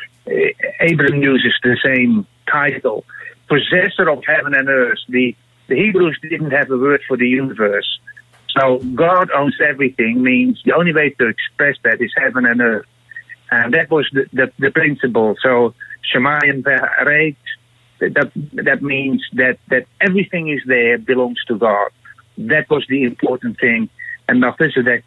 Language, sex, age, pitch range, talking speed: English, male, 60-79, 120-165 Hz, 150 wpm